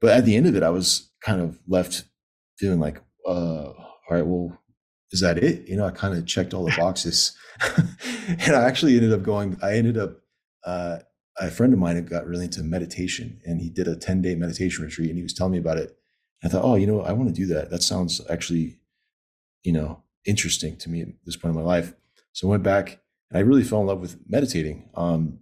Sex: male